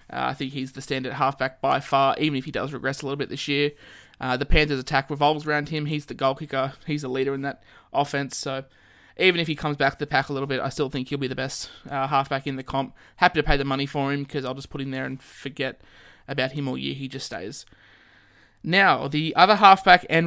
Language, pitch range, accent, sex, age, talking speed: English, 130-150 Hz, Australian, male, 20-39, 260 wpm